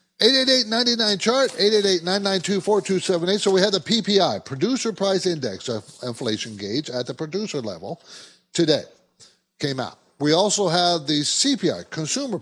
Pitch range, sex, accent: 120-185 Hz, male, American